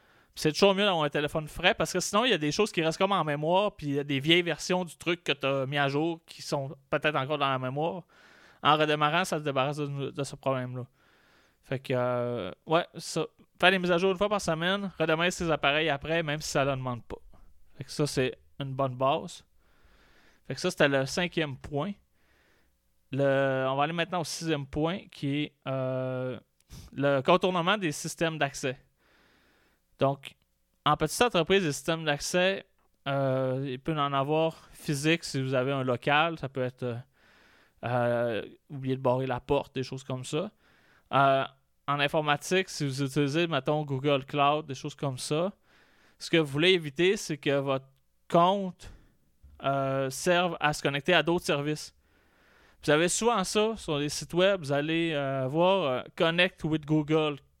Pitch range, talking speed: 135-165 Hz, 190 wpm